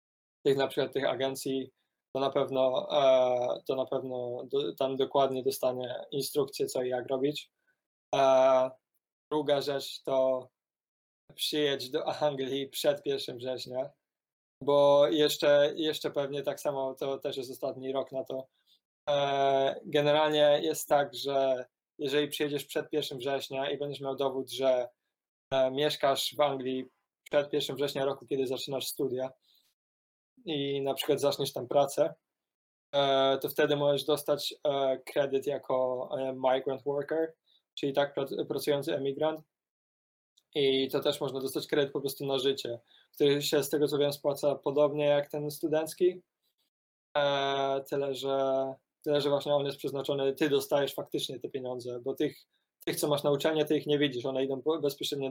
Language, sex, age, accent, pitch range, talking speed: Polish, male, 20-39, native, 135-145 Hz, 140 wpm